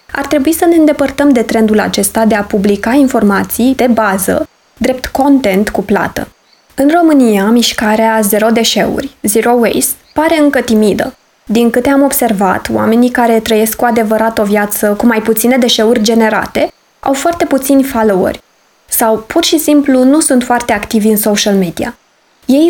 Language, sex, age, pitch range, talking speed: Romanian, female, 20-39, 215-275 Hz, 160 wpm